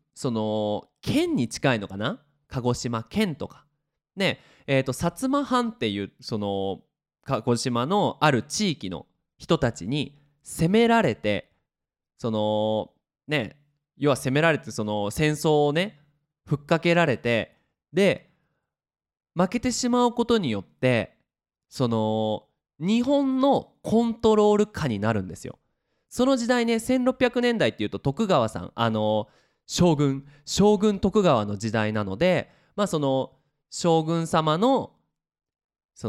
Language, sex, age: Japanese, male, 20-39